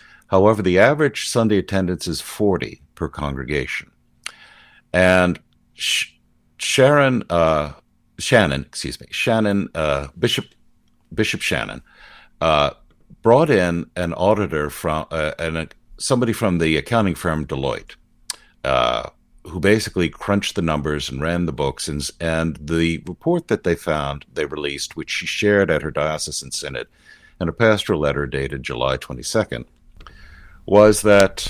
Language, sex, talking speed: English, male, 135 wpm